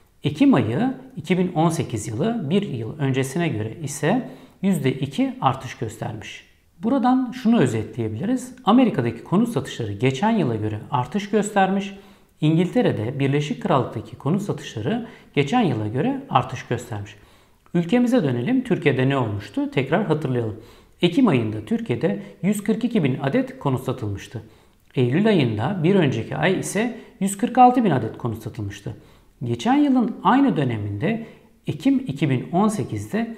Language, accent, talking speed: Turkish, native, 115 wpm